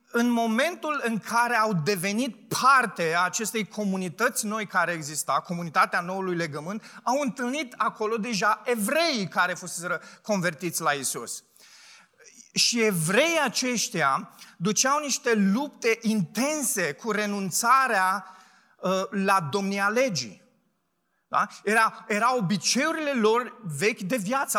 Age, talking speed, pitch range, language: 30-49, 110 wpm, 195-245 Hz, Romanian